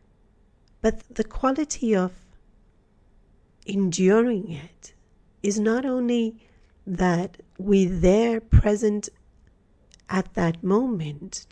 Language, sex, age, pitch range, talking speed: English, female, 40-59, 165-215 Hz, 85 wpm